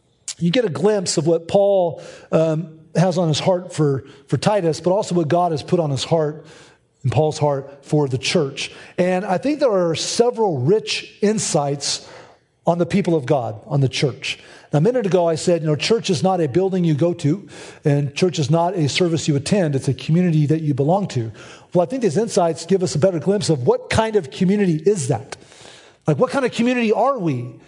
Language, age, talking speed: English, 40-59, 215 wpm